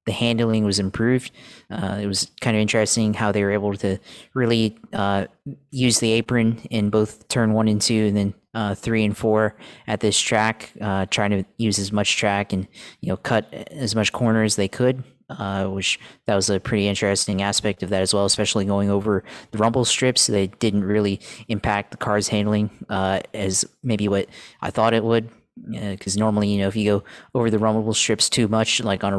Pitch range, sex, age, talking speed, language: 100-110 Hz, male, 20-39, 210 wpm, English